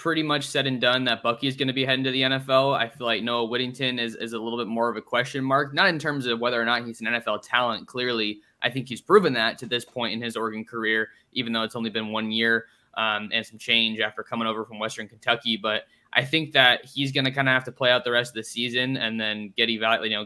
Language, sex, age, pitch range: English, male, 20-39, 115-135 Hz